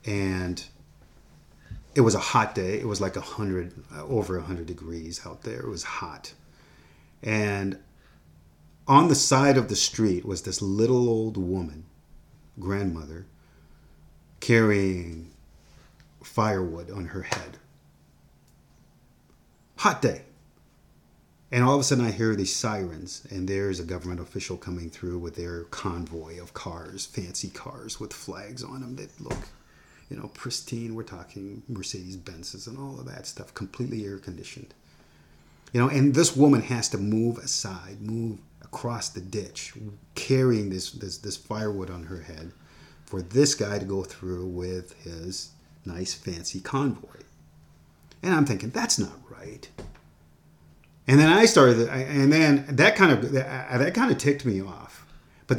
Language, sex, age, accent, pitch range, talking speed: English, male, 30-49, American, 85-120 Hz, 150 wpm